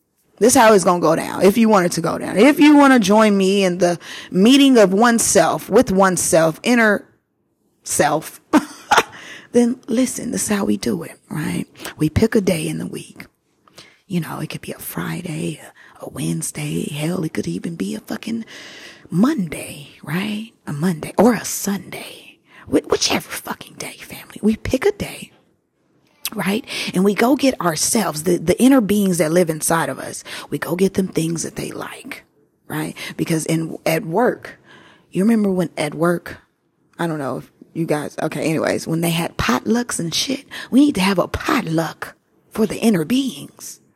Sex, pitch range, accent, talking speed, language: female, 170-235 Hz, American, 185 wpm, English